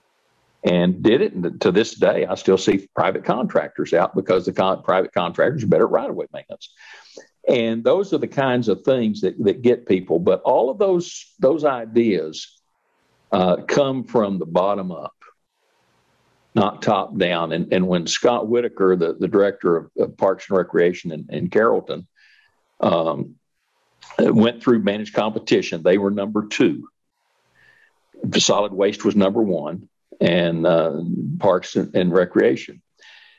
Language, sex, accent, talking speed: English, male, American, 155 wpm